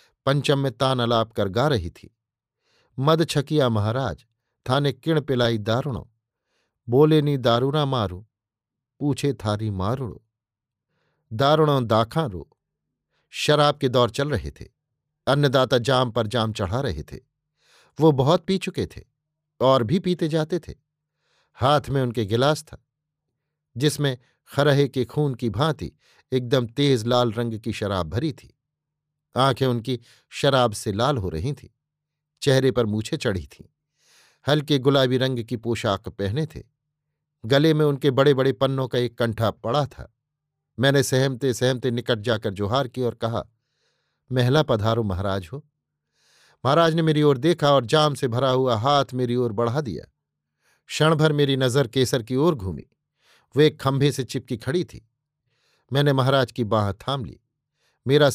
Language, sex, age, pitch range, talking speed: Hindi, male, 50-69, 115-145 Hz, 150 wpm